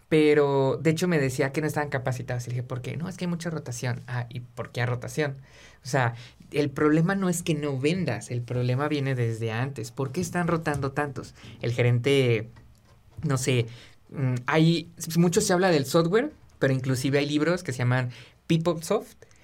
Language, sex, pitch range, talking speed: Spanish, male, 125-155 Hz, 195 wpm